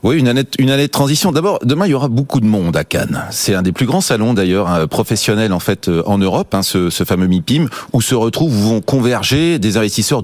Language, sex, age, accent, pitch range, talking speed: French, male, 30-49, French, 95-120 Hz, 240 wpm